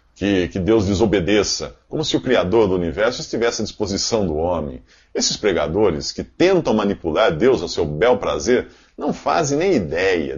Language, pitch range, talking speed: Portuguese, 85-120 Hz, 170 wpm